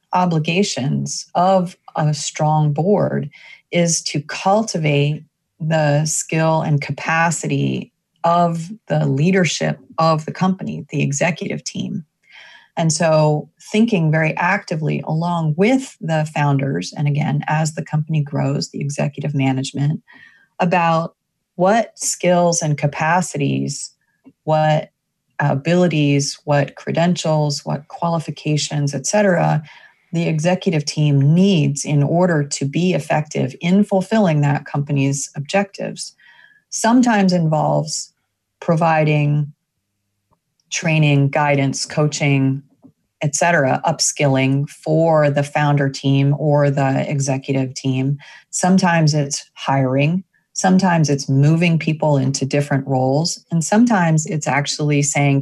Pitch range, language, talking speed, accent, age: 140-170 Hz, English, 105 wpm, American, 30-49